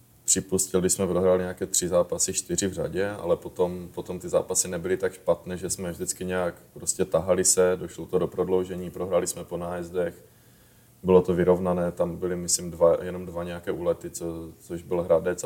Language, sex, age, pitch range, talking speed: Czech, male, 20-39, 85-90 Hz, 180 wpm